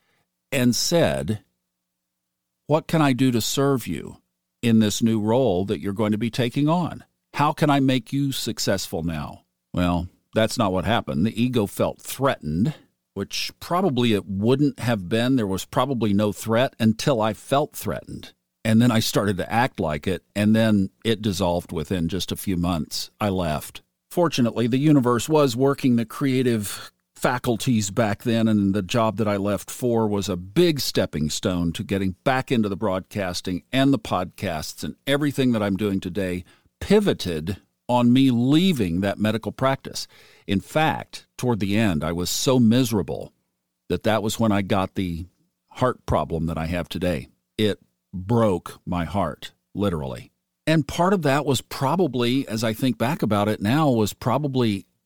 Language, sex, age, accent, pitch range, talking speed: English, male, 50-69, American, 90-125 Hz, 170 wpm